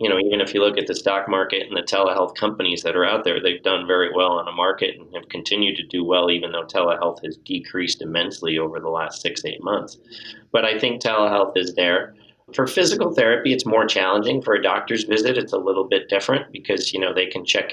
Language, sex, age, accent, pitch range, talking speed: English, male, 30-49, American, 95-120 Hz, 235 wpm